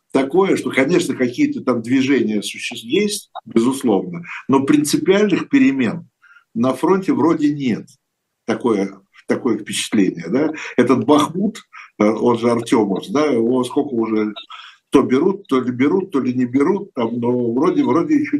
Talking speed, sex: 135 wpm, male